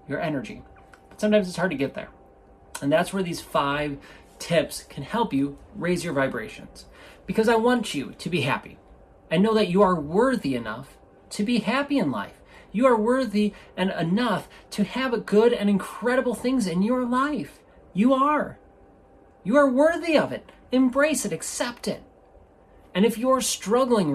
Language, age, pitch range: English, 30-49, 155-225 Hz